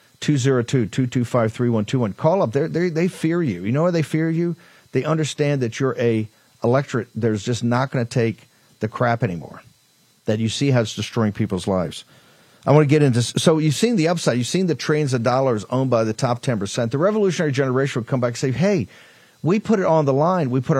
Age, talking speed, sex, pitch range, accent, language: 50-69, 220 wpm, male, 125-155 Hz, American, English